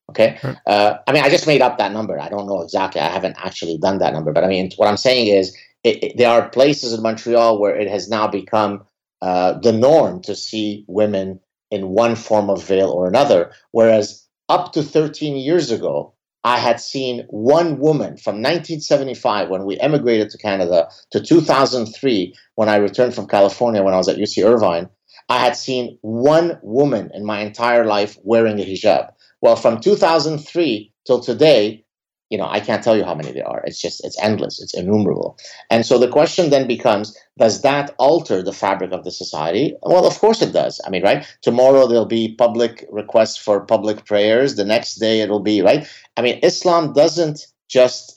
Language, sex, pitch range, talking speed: English, male, 105-130 Hz, 195 wpm